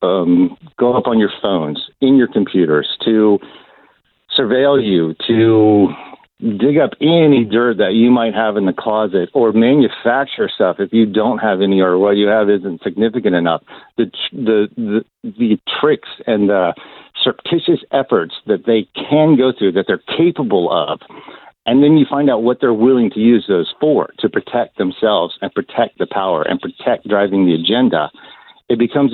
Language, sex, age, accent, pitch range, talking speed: English, male, 50-69, American, 105-145 Hz, 175 wpm